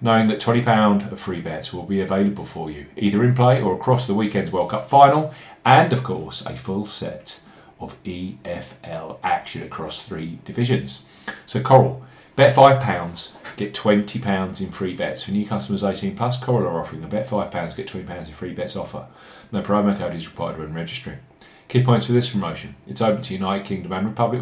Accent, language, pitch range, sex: British, English, 100-130 Hz, male